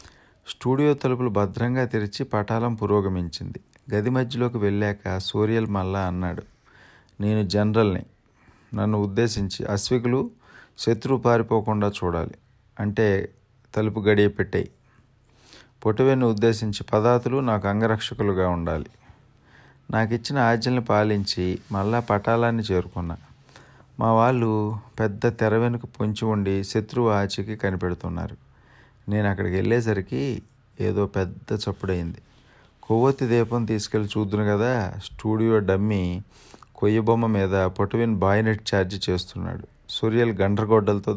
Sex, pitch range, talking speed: male, 100-115 Hz, 95 wpm